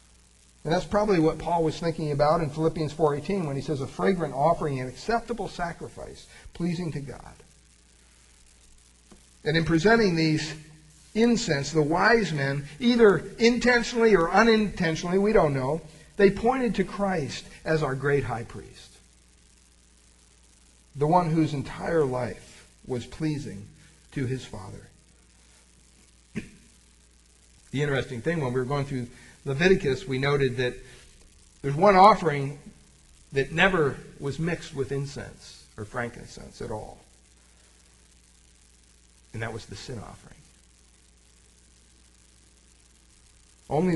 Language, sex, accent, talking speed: English, male, American, 120 wpm